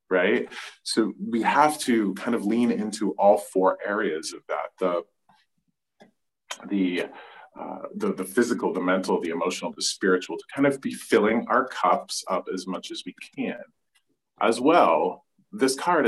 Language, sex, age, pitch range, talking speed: English, male, 30-49, 95-130 Hz, 160 wpm